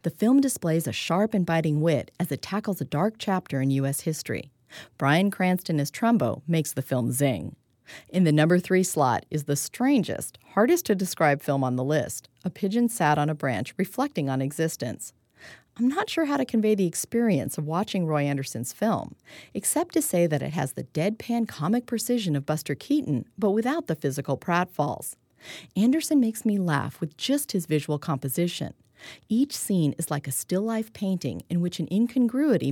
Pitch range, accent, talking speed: 145-215 Hz, American, 180 wpm